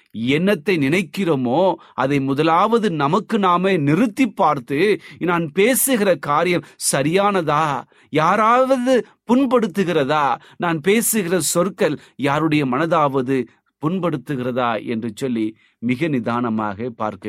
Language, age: Tamil, 30-49